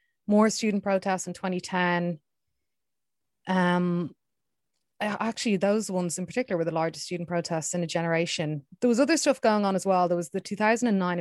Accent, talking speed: Irish, 165 wpm